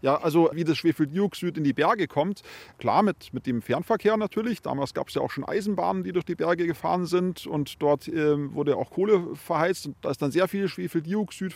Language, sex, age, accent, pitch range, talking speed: German, male, 30-49, German, 130-170 Hz, 220 wpm